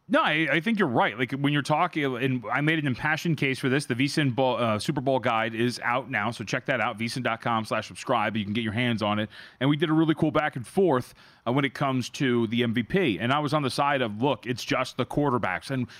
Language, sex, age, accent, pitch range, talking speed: English, male, 30-49, American, 125-160 Hz, 255 wpm